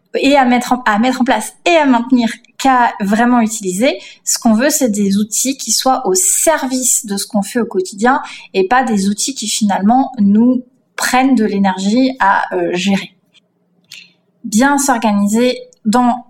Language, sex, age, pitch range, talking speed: French, female, 30-49, 200-255 Hz, 170 wpm